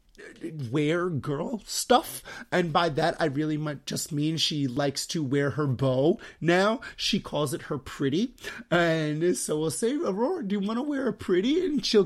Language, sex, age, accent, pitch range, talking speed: English, male, 30-49, American, 150-205 Hz, 185 wpm